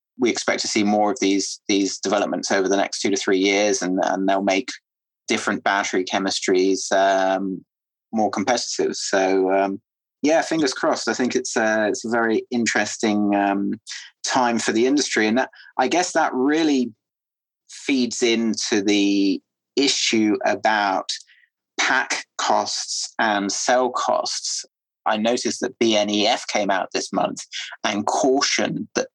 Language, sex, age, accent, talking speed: English, male, 30-49, British, 145 wpm